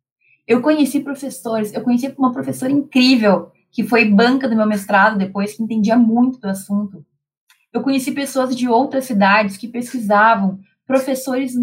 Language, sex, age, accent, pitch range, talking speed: Portuguese, female, 20-39, Brazilian, 200-265 Hz, 150 wpm